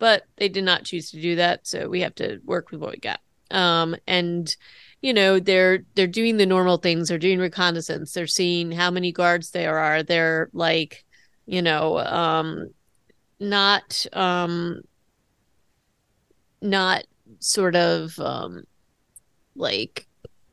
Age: 30-49